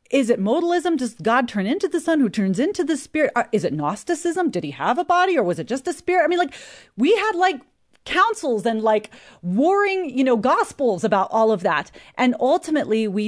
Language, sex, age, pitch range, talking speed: English, female, 40-59, 205-305 Hz, 215 wpm